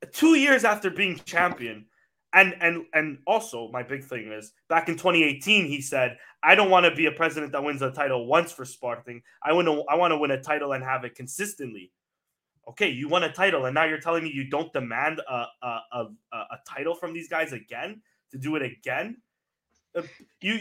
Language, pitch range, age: English, 150-225 Hz, 20-39